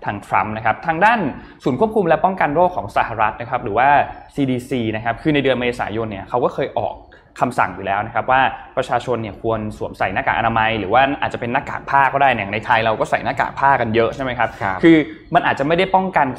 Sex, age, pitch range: male, 20-39, 105-145 Hz